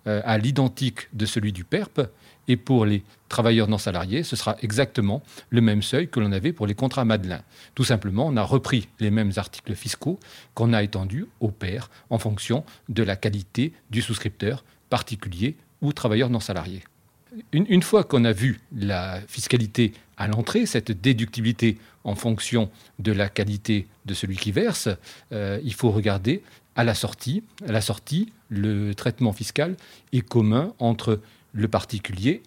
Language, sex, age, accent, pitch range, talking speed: French, male, 40-59, French, 105-130 Hz, 165 wpm